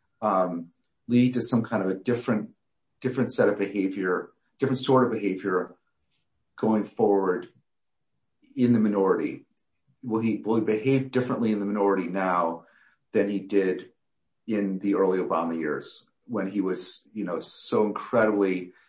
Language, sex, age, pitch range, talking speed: English, male, 40-59, 95-110 Hz, 145 wpm